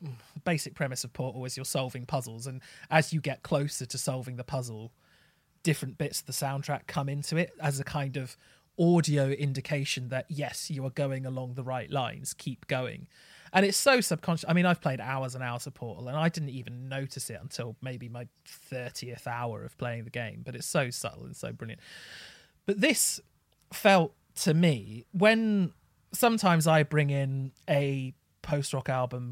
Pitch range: 130-160 Hz